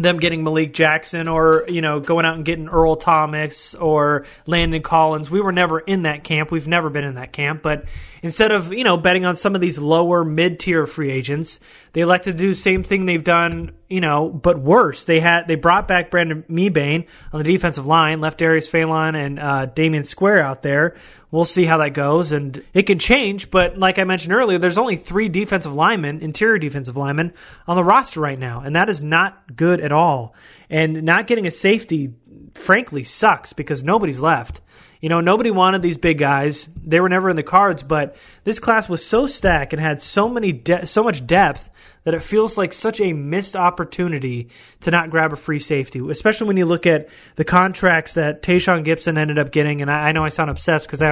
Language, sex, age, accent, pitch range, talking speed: English, male, 30-49, American, 155-185 Hz, 215 wpm